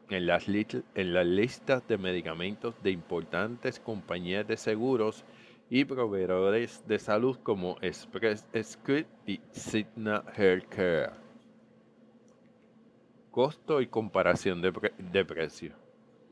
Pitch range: 95-120 Hz